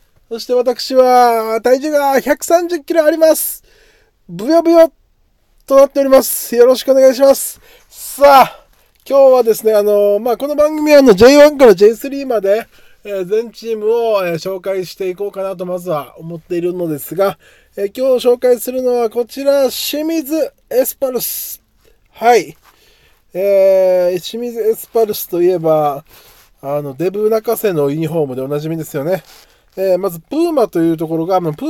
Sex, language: male, Japanese